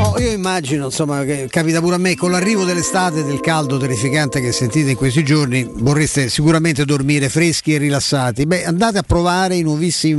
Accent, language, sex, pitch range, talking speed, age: native, Italian, male, 145-180 Hz, 190 wpm, 50-69